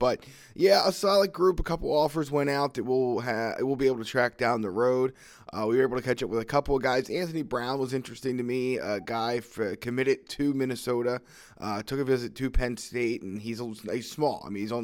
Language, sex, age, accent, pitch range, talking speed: English, male, 20-39, American, 110-135 Hz, 245 wpm